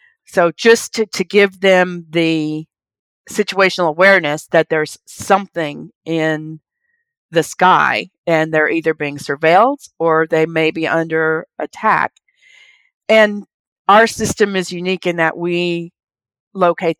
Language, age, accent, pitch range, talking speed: English, 40-59, American, 160-195 Hz, 125 wpm